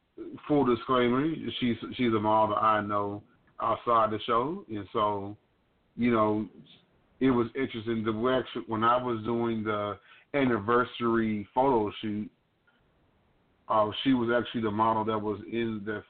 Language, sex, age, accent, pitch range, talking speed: English, male, 30-49, American, 105-120 Hz, 150 wpm